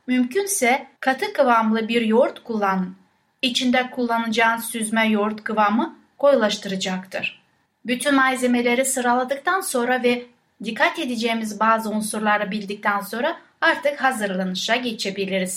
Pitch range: 210-275 Hz